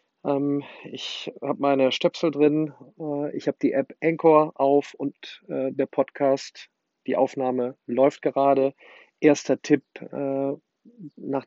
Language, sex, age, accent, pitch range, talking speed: German, male, 40-59, German, 135-150 Hz, 110 wpm